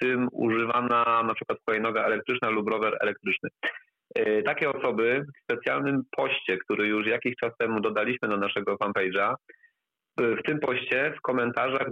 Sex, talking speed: male, 155 wpm